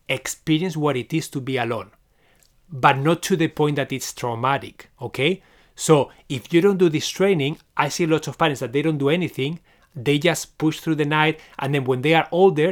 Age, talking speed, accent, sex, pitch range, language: 30-49, 210 wpm, Spanish, male, 135-160 Hz, English